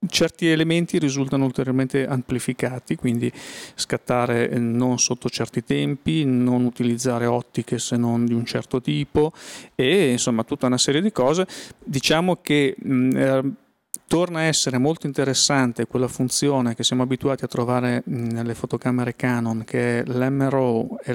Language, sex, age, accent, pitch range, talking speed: Italian, male, 40-59, native, 120-140 Hz, 140 wpm